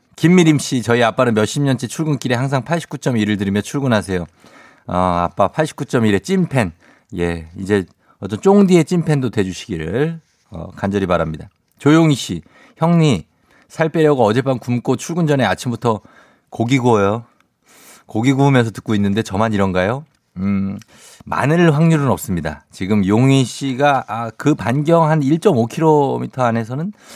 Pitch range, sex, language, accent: 105-150 Hz, male, Korean, native